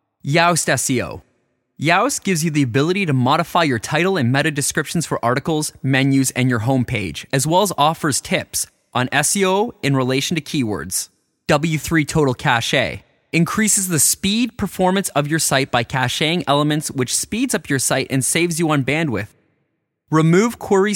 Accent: American